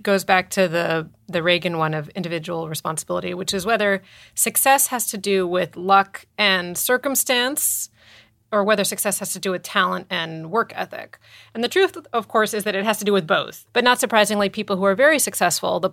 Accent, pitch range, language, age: American, 175-205 Hz, English, 30-49